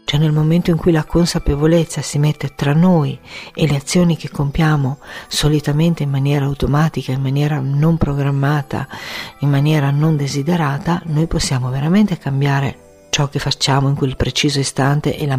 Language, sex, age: Italian, female, 50-69